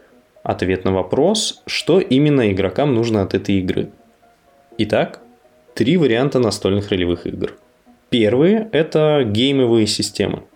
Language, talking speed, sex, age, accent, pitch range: Russian, 120 wpm, male, 20-39, native, 100-130 Hz